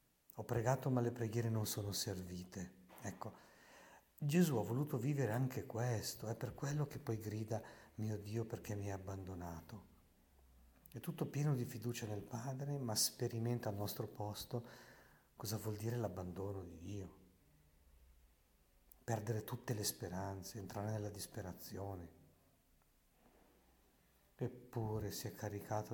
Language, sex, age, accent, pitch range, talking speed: Italian, male, 50-69, native, 95-125 Hz, 130 wpm